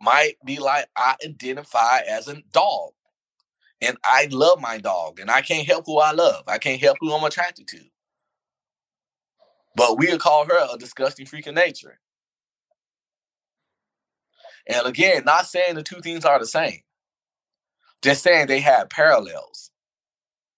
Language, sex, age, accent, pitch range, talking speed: English, male, 20-39, American, 155-215 Hz, 150 wpm